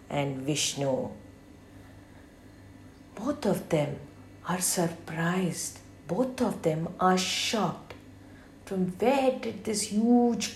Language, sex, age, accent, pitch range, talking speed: English, female, 50-69, Indian, 140-190 Hz, 95 wpm